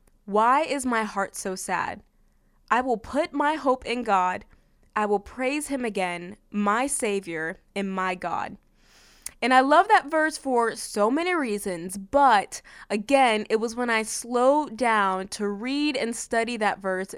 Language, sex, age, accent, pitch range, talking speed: English, female, 20-39, American, 205-270 Hz, 160 wpm